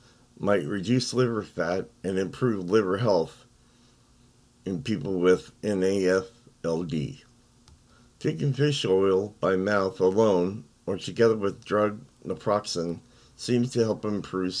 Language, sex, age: English, male, 50-69